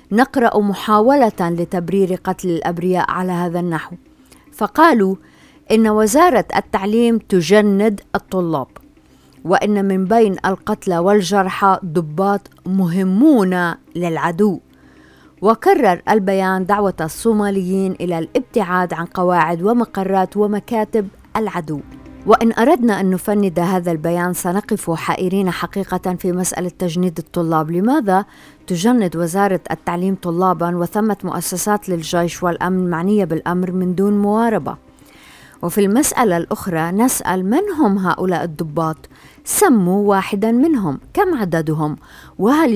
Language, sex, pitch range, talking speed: Arabic, female, 175-210 Hz, 105 wpm